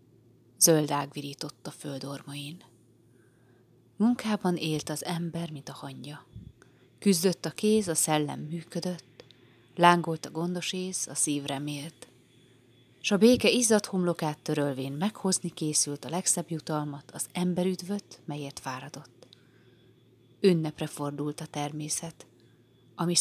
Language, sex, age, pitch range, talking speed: Hungarian, female, 30-49, 125-175 Hz, 110 wpm